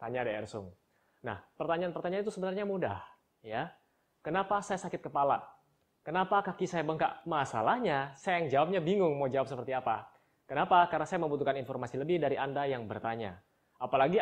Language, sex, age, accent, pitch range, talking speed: Indonesian, male, 20-39, native, 130-175 Hz, 150 wpm